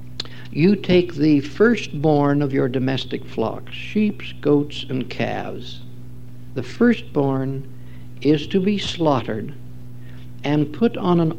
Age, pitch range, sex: 60-79, 125-195 Hz, male